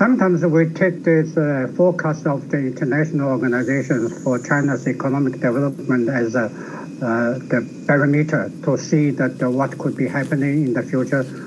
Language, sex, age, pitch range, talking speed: English, male, 60-79, 135-165 Hz, 155 wpm